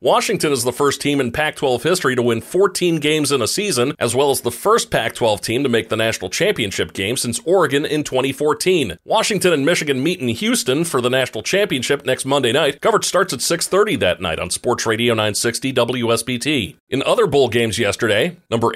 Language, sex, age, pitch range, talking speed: English, male, 40-59, 115-155 Hz, 200 wpm